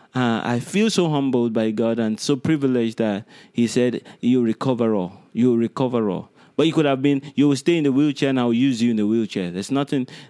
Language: English